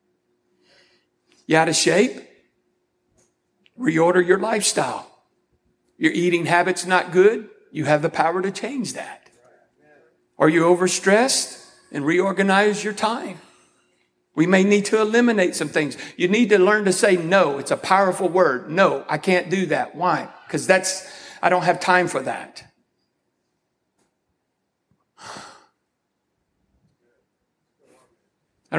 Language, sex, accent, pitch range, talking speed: English, male, American, 160-190 Hz, 125 wpm